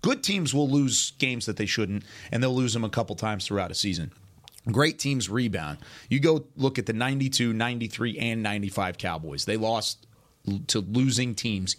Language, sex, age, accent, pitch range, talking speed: English, male, 30-49, American, 100-125 Hz, 185 wpm